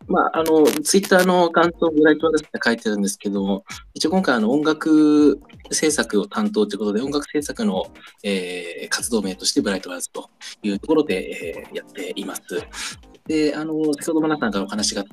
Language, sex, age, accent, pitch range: Japanese, male, 20-39, native, 105-170 Hz